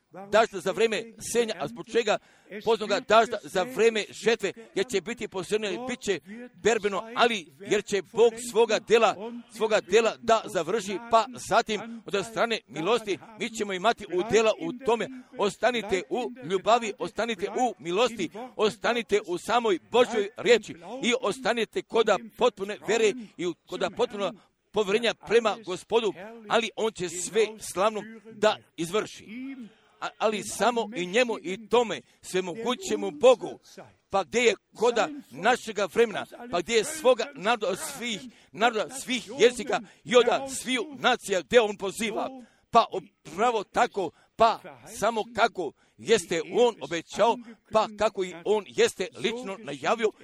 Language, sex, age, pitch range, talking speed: Croatian, male, 50-69, 195-235 Hz, 135 wpm